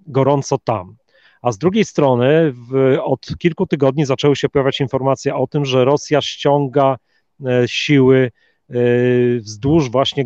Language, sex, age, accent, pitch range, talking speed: Polish, male, 40-59, native, 130-155 Hz, 130 wpm